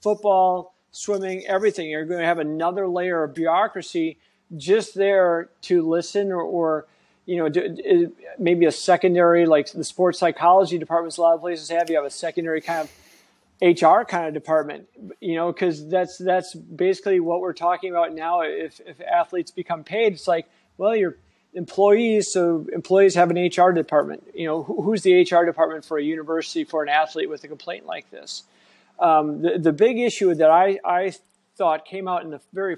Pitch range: 165-190 Hz